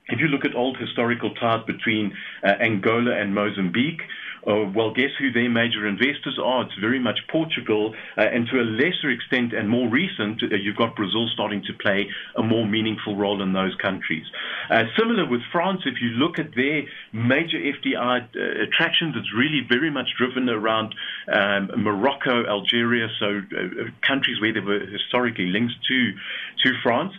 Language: English